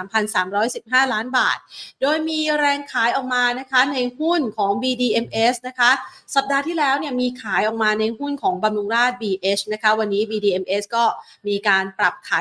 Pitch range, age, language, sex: 205-250 Hz, 30-49, Thai, female